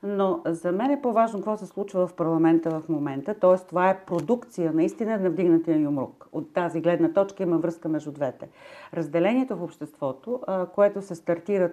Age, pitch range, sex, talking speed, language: 50-69, 155-190 Hz, female, 175 wpm, Bulgarian